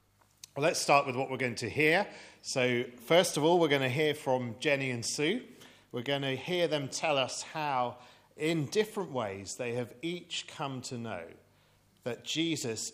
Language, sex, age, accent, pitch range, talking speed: English, male, 40-59, British, 120-150 Hz, 180 wpm